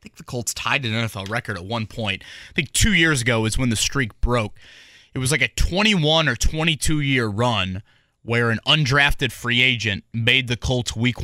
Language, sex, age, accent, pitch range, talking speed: English, male, 20-39, American, 110-140 Hz, 205 wpm